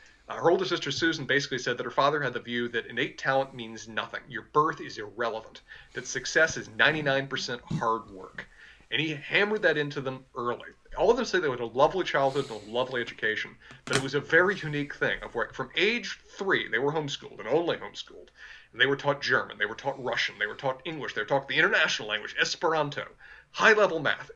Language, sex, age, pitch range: English, male, 30-49, 130-175 Hz